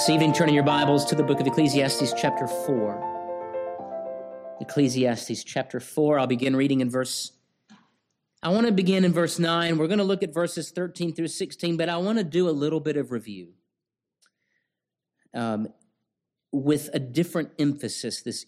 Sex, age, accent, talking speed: male, 50-69, American, 170 wpm